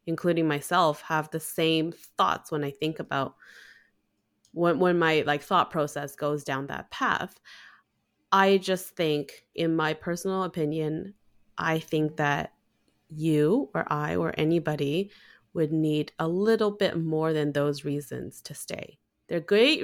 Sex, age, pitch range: female, 20-39, 155-185 Hz